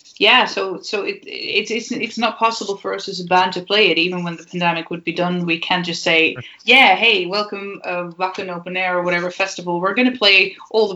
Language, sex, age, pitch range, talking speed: English, female, 20-39, 175-210 Hz, 240 wpm